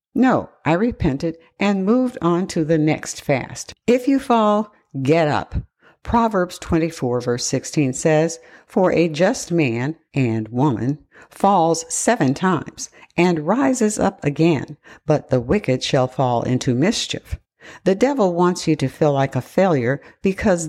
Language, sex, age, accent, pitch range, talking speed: English, female, 60-79, American, 135-185 Hz, 145 wpm